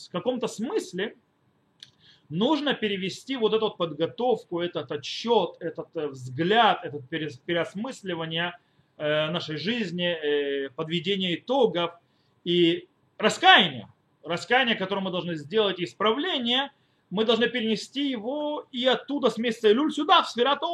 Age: 30-49